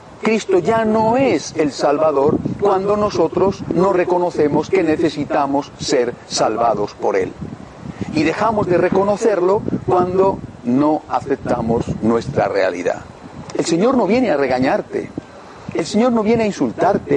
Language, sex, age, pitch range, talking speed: Spanish, male, 50-69, 165-225 Hz, 130 wpm